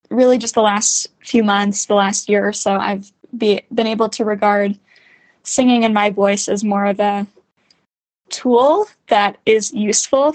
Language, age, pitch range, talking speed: English, 10-29, 200-225 Hz, 170 wpm